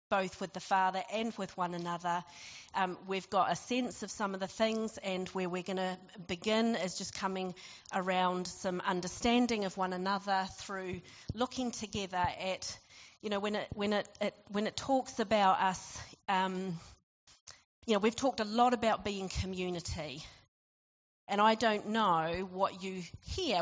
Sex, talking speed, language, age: female, 170 wpm, English, 40-59